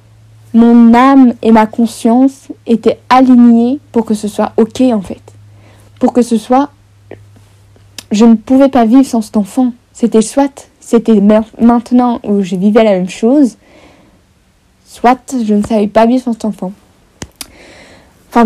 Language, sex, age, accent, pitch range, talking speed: French, female, 20-39, French, 210-250 Hz, 150 wpm